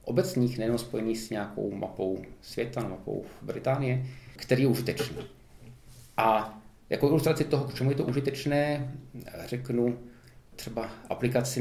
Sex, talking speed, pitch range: male, 120 wpm, 115-135 Hz